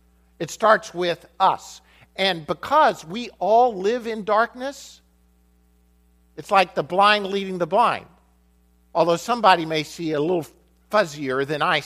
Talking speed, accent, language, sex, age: 135 wpm, American, English, male, 50-69